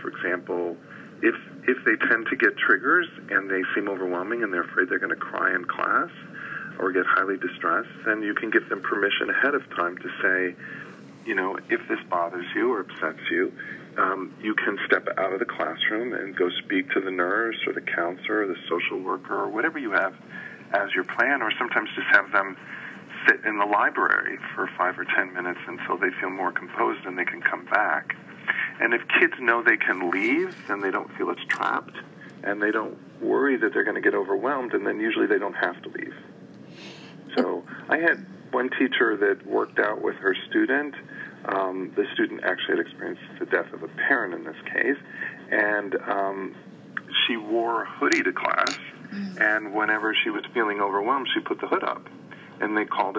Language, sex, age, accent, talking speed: English, male, 40-59, American, 195 wpm